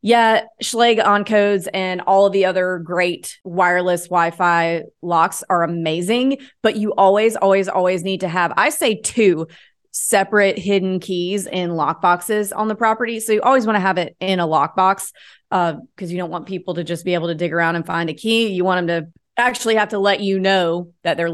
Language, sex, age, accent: English, female, 30-49, American